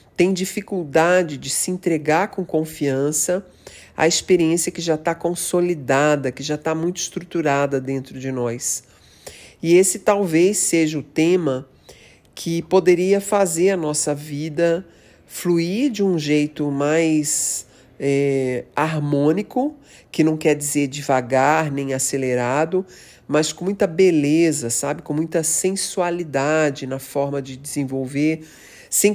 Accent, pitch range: Brazilian, 140-175 Hz